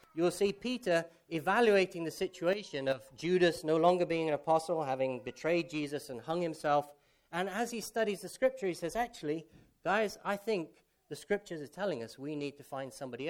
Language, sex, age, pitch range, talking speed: English, male, 40-59, 145-200 Hz, 185 wpm